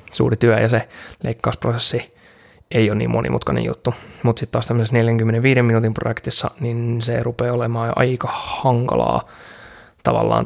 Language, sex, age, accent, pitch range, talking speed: Finnish, male, 20-39, native, 115-125 Hz, 140 wpm